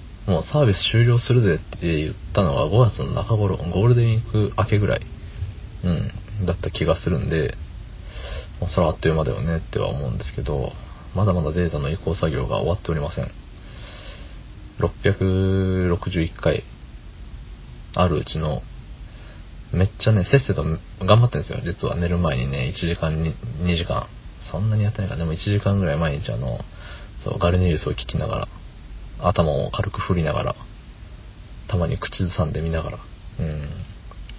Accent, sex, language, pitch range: native, male, Japanese, 85-110 Hz